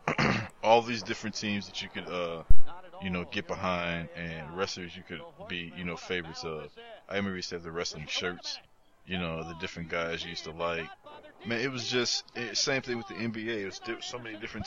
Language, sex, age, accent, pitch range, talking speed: English, male, 20-39, American, 85-105 Hz, 215 wpm